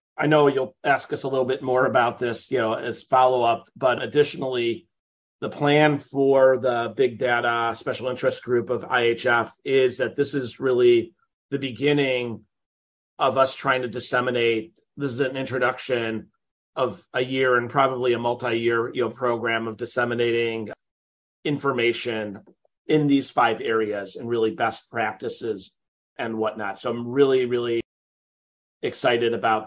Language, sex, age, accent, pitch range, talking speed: English, male, 30-49, American, 115-140 Hz, 155 wpm